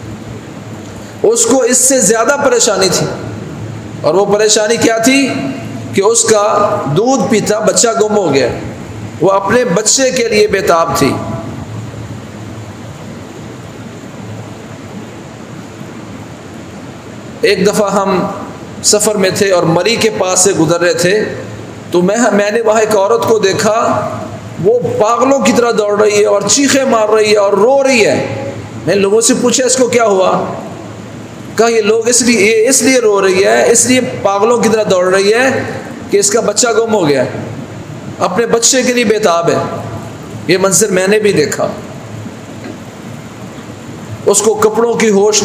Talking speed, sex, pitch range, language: 155 wpm, male, 170-230 Hz, Urdu